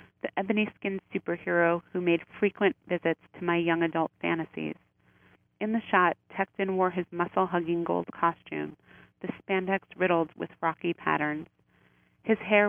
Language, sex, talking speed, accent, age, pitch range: English, female, 135 wpm, American, 30-49, 165-190 Hz